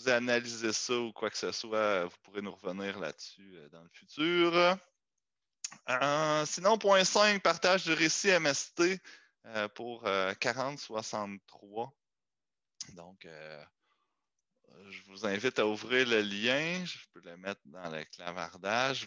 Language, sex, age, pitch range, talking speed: French, male, 20-39, 95-145 Hz, 140 wpm